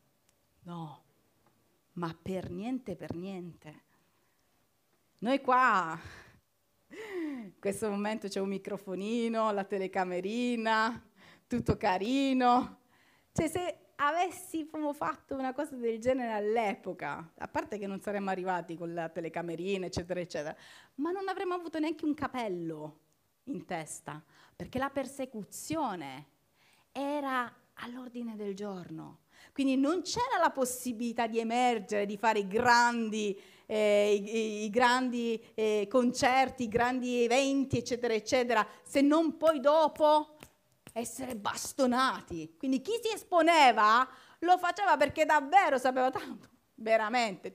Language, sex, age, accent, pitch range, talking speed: Italian, female, 30-49, native, 190-265 Hz, 115 wpm